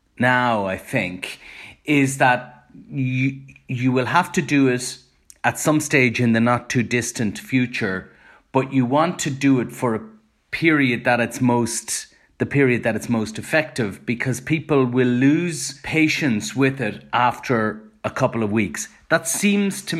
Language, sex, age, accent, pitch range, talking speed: English, male, 30-49, Irish, 120-140 Hz, 160 wpm